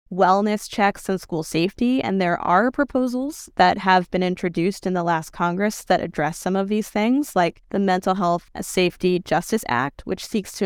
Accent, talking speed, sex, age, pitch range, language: American, 185 wpm, female, 20-39, 170-205 Hz, English